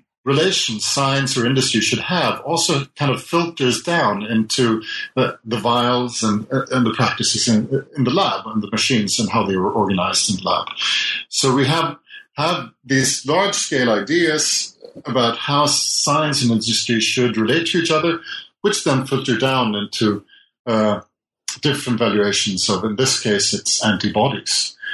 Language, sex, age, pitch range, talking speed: English, male, 50-69, 115-150 Hz, 155 wpm